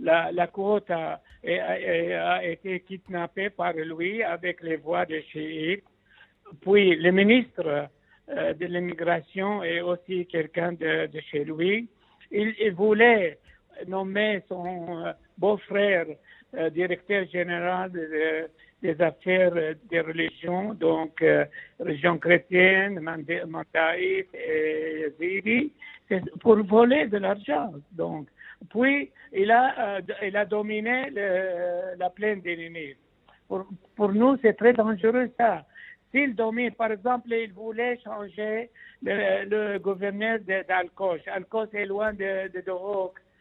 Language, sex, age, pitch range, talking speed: French, male, 60-79, 175-220 Hz, 120 wpm